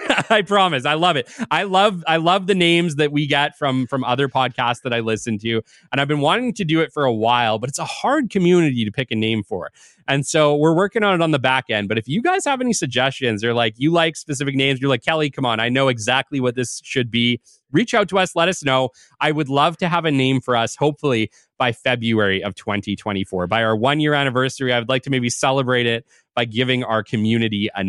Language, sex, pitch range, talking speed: English, male, 120-165 Hz, 245 wpm